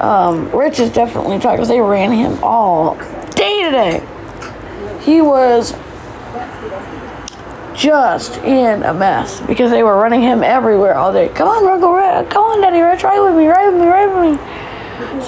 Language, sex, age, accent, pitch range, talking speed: English, female, 20-39, American, 250-320 Hz, 175 wpm